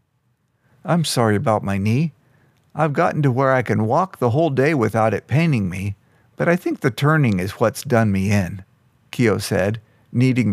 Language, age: English, 50-69